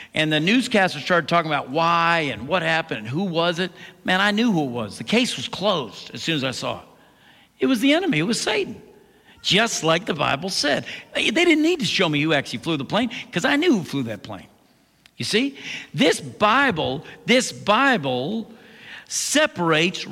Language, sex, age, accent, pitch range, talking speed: English, male, 50-69, American, 140-195 Hz, 200 wpm